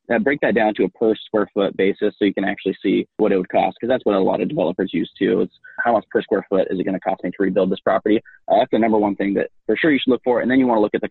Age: 20-39